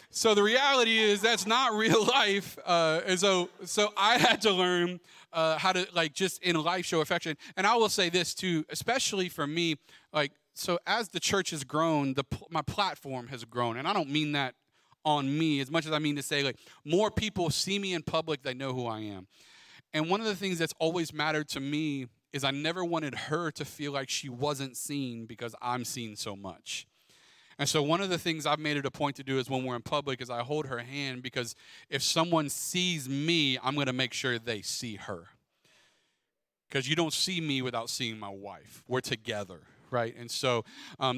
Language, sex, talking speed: English, male, 215 wpm